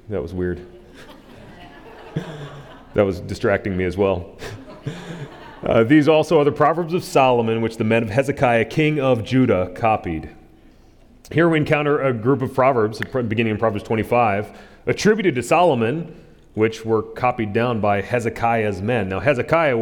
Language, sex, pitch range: English, male, 110-150 Hz